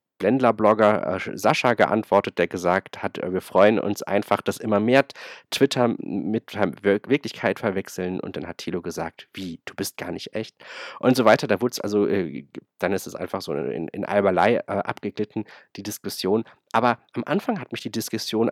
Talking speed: 180 wpm